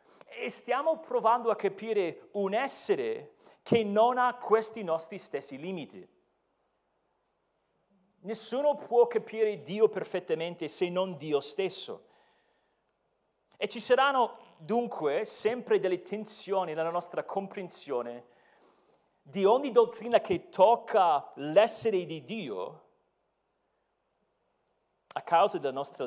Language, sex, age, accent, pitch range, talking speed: Italian, male, 40-59, native, 195-260 Hz, 105 wpm